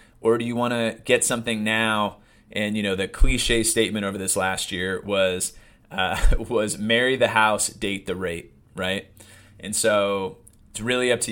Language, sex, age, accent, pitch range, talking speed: English, male, 30-49, American, 100-120 Hz, 180 wpm